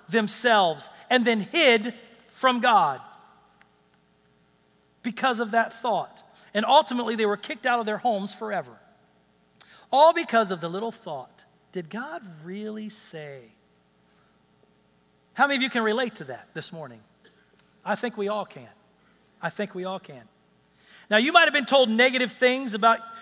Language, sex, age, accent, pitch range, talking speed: English, male, 40-59, American, 180-225 Hz, 150 wpm